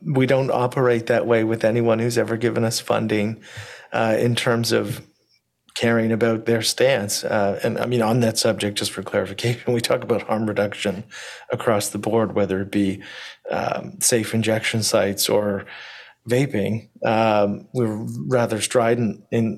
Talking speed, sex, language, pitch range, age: 160 wpm, male, English, 105-120 Hz, 40-59